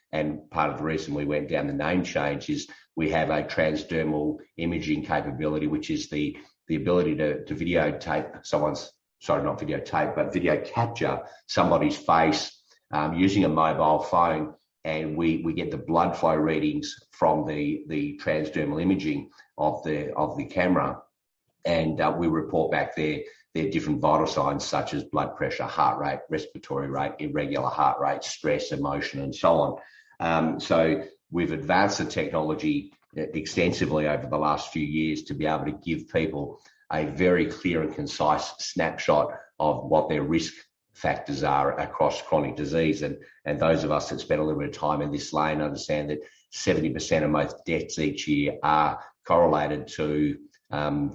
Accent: Australian